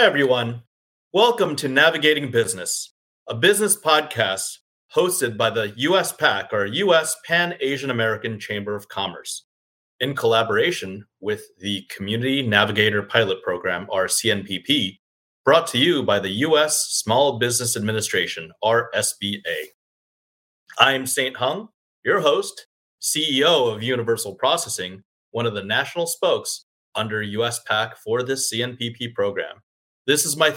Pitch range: 110-170 Hz